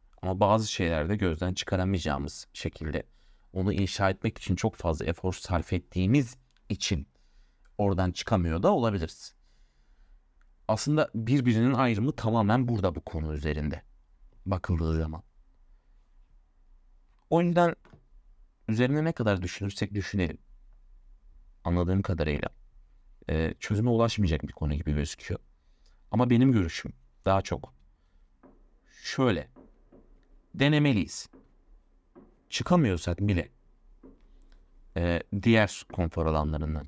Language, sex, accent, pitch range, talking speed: Turkish, male, native, 75-100 Hz, 95 wpm